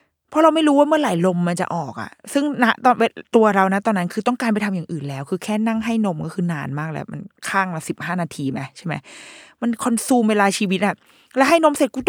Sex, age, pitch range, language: female, 20-39, 175-240 Hz, Thai